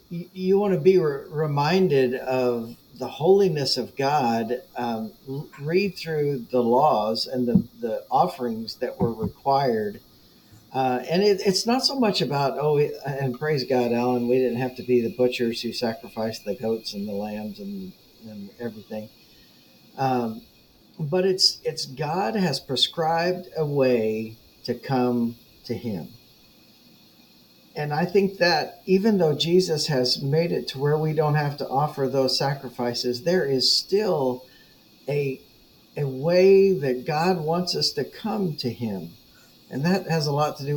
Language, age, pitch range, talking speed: English, 50-69, 120-170 Hz, 155 wpm